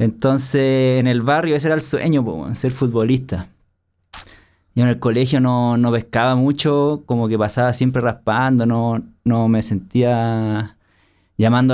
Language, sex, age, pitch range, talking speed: Spanish, male, 20-39, 110-145 Hz, 150 wpm